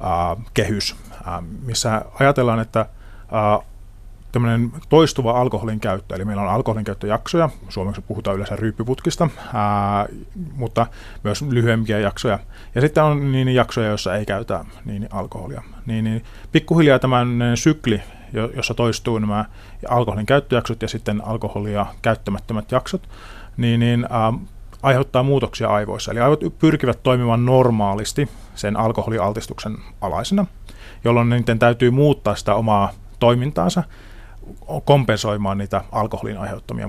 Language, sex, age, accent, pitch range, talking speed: Finnish, male, 30-49, native, 100-120 Hz, 110 wpm